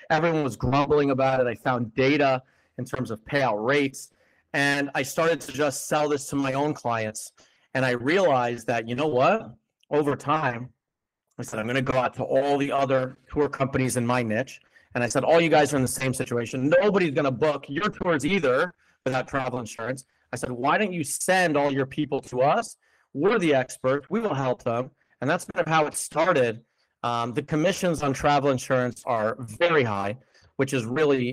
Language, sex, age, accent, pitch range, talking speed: English, male, 40-59, American, 125-150 Hz, 205 wpm